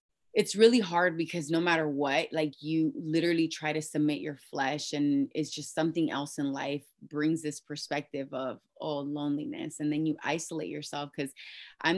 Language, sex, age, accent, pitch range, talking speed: English, female, 20-39, American, 145-175 Hz, 175 wpm